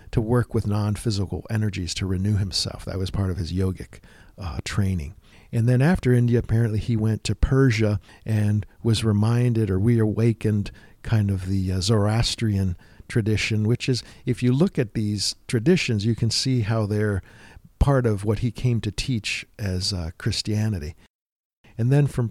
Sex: male